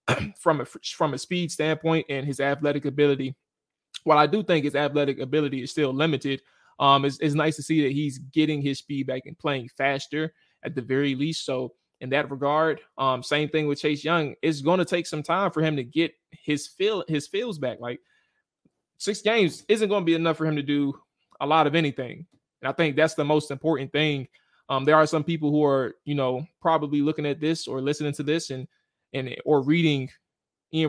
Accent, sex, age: American, male, 20-39